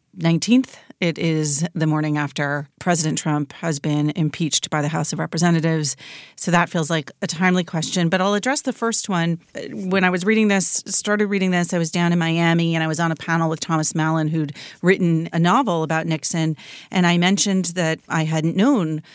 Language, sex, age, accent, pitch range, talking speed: English, female, 40-59, American, 155-195 Hz, 200 wpm